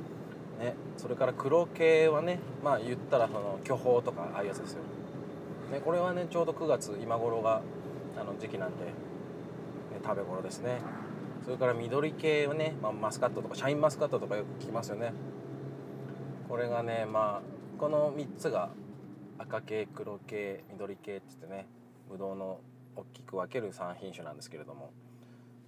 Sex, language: male, Japanese